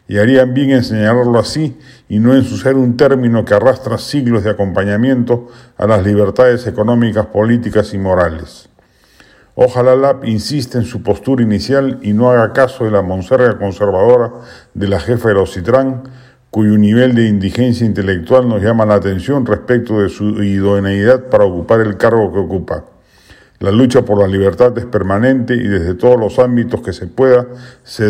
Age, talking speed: 50-69, 175 wpm